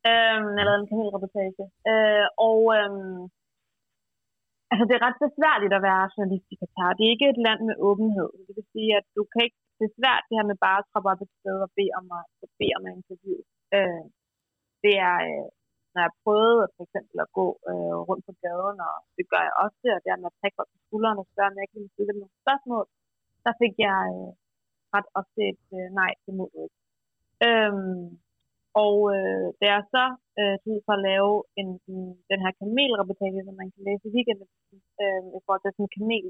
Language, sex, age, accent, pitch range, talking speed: Danish, female, 30-49, native, 190-220 Hz, 210 wpm